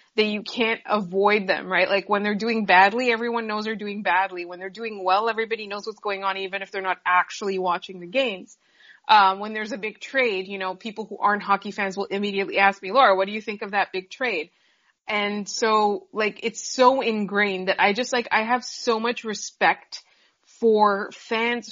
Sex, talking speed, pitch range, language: female, 210 wpm, 195-225 Hz, English